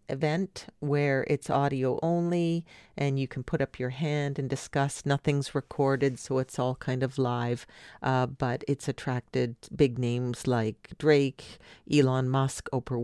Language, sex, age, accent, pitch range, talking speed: English, female, 40-59, American, 125-145 Hz, 150 wpm